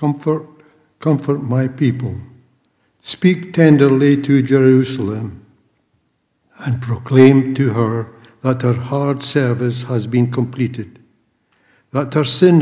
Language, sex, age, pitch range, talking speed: English, male, 60-79, 120-140 Hz, 105 wpm